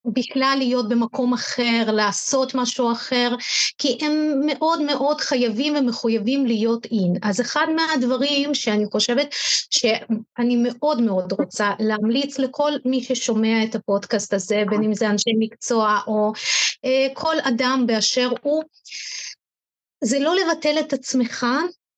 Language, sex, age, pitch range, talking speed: Hebrew, female, 30-49, 225-275 Hz, 130 wpm